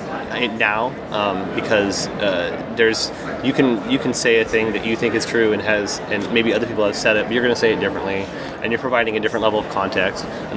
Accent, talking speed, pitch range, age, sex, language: American, 240 wpm, 100-120 Hz, 30-49, male, English